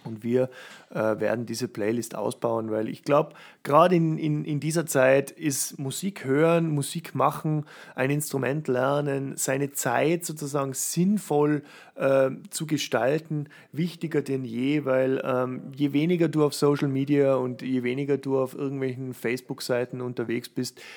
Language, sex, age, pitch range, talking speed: German, male, 30-49, 115-145 Hz, 145 wpm